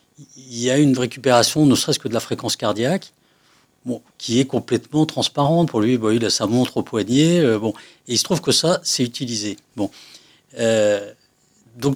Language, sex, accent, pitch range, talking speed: French, male, French, 115-150 Hz, 195 wpm